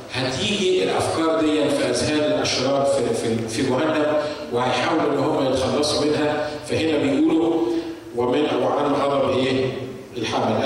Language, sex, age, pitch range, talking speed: Arabic, male, 40-59, 120-150 Hz, 120 wpm